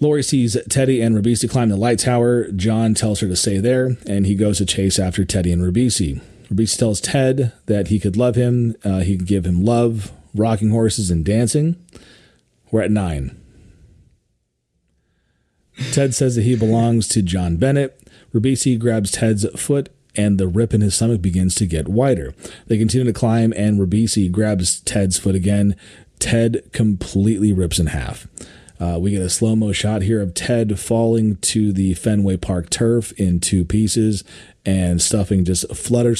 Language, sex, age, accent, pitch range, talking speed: English, male, 30-49, American, 95-115 Hz, 170 wpm